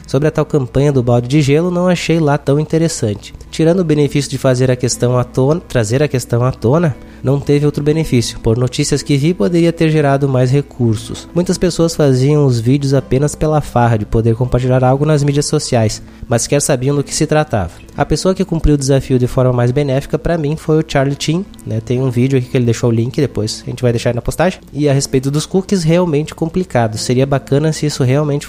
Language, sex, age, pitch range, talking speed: Portuguese, male, 20-39, 125-150 Hz, 225 wpm